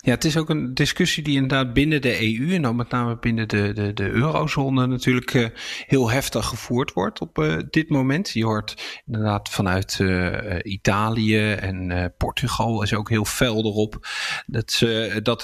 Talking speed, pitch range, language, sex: 165 wpm, 105-125 Hz, English, male